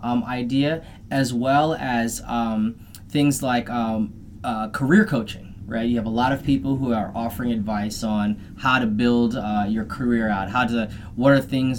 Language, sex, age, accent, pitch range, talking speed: English, male, 20-39, American, 105-135 Hz, 185 wpm